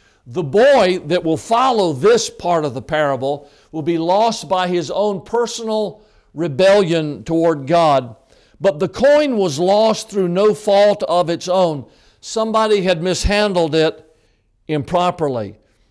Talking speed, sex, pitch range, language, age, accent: 135 wpm, male, 145-205 Hz, English, 60-79, American